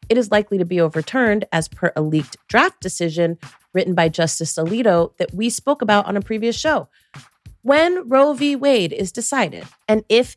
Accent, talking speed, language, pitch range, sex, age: American, 185 wpm, English, 170-255 Hz, female, 30-49